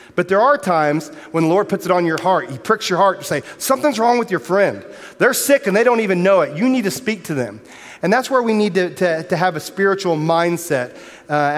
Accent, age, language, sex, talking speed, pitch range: American, 40-59, English, male, 255 wpm, 160-220 Hz